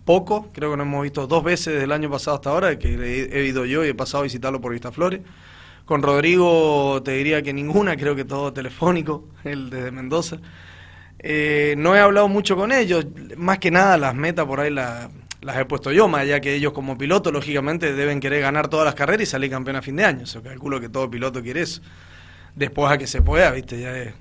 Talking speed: 235 wpm